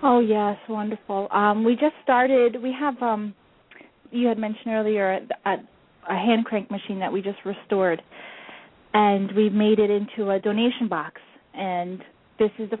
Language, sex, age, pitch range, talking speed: English, female, 30-49, 200-235 Hz, 165 wpm